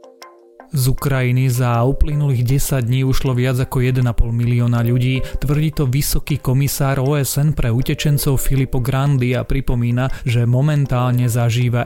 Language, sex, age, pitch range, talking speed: Slovak, male, 30-49, 120-135 Hz, 130 wpm